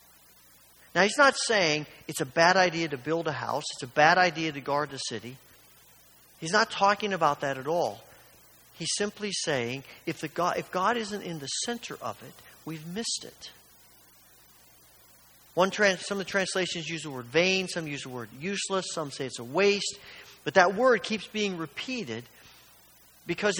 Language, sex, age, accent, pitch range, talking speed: English, male, 50-69, American, 135-200 Hz, 170 wpm